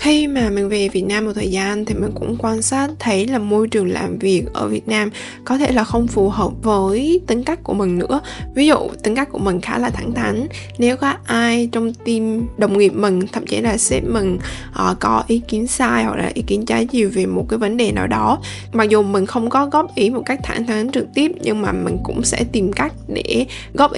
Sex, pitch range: female, 195-240 Hz